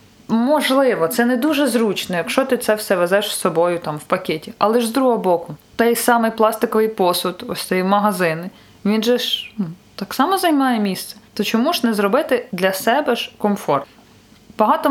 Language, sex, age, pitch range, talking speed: Ukrainian, female, 20-39, 185-240 Hz, 180 wpm